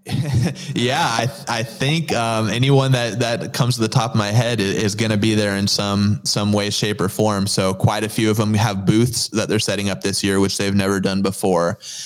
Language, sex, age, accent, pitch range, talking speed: English, male, 20-39, American, 100-110 Hz, 240 wpm